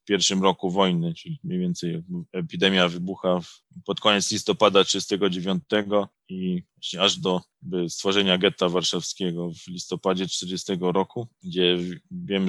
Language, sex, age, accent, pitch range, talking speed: Polish, male, 20-39, native, 90-100 Hz, 115 wpm